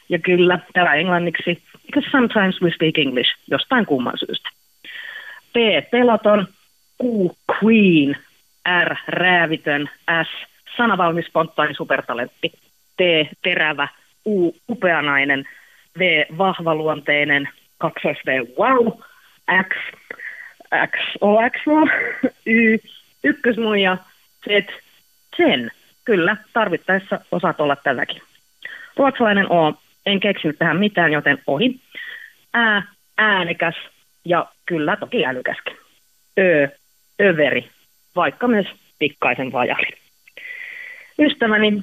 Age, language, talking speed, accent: 30-49, Finnish, 90 wpm, native